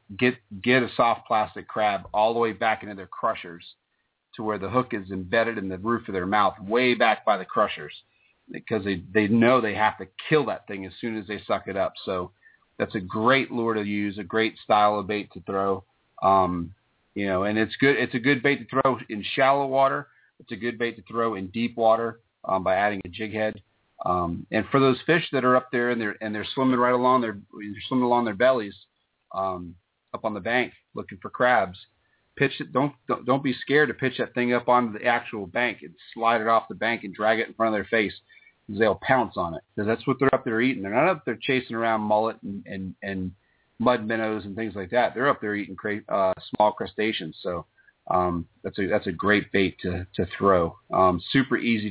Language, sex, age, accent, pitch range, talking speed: English, male, 40-59, American, 95-125 Hz, 230 wpm